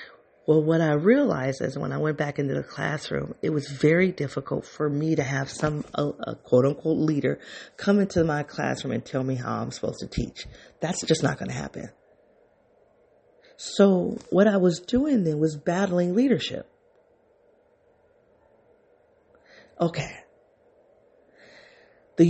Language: English